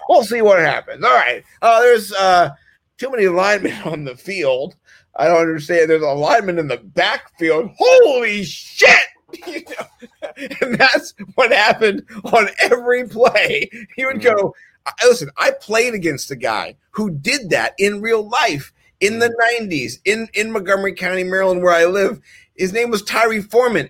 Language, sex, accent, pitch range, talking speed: English, male, American, 165-230 Hz, 160 wpm